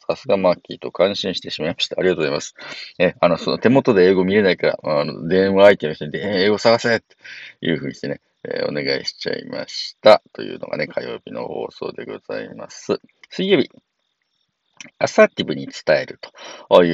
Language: Japanese